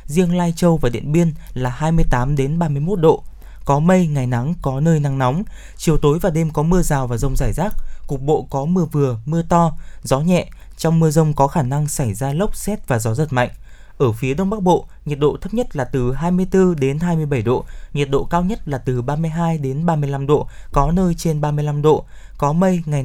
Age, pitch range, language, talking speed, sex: 20-39, 135-170 Hz, Vietnamese, 225 wpm, male